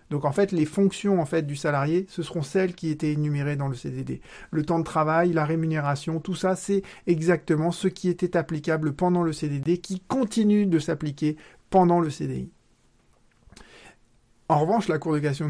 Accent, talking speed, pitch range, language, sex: French, 185 wpm, 140-170 Hz, French, male